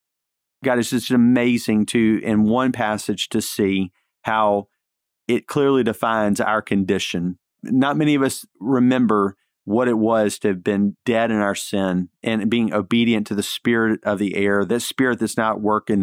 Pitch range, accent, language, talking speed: 100-120 Hz, American, English, 170 wpm